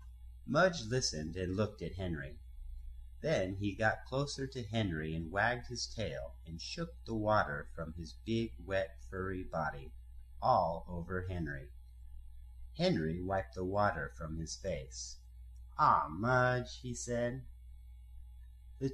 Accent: American